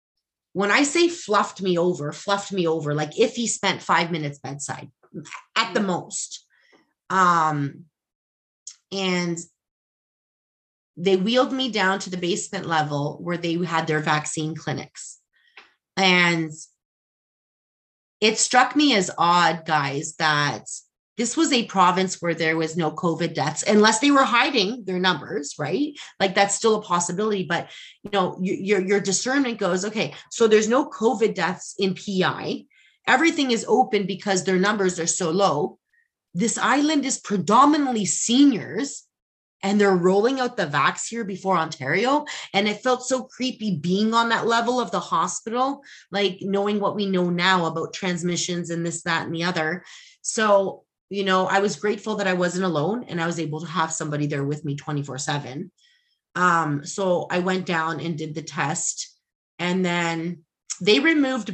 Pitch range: 165-210 Hz